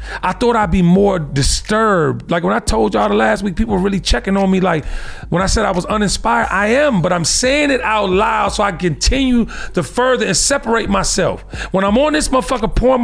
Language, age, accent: English, 40-59, American